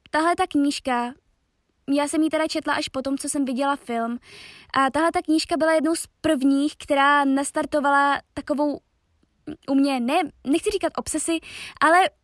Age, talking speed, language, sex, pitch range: 20-39, 155 wpm, Czech, female, 265-315 Hz